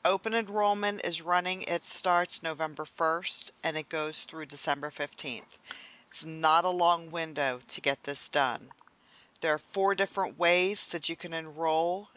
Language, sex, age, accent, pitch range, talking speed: English, female, 40-59, American, 160-185 Hz, 160 wpm